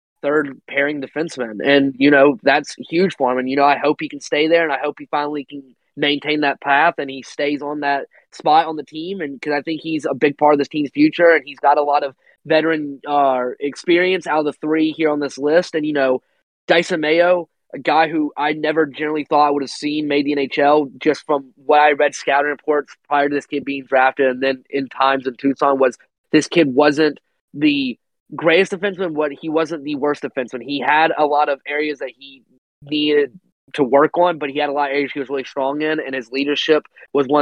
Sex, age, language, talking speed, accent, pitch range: male, 20-39, English, 235 wpm, American, 140-155 Hz